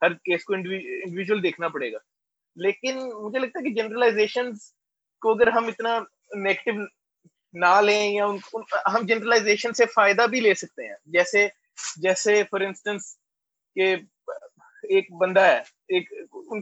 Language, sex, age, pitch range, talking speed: Urdu, male, 20-39, 205-245 Hz, 130 wpm